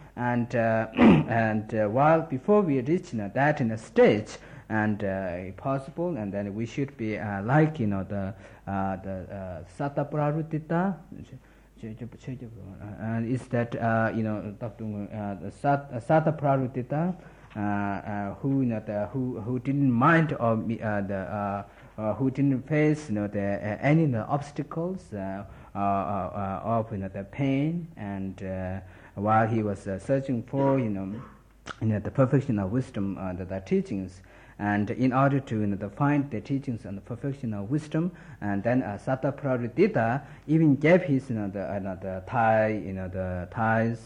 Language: Italian